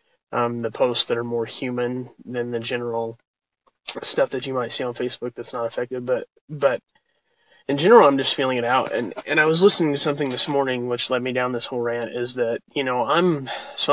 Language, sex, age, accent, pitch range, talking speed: English, male, 20-39, American, 120-135 Hz, 215 wpm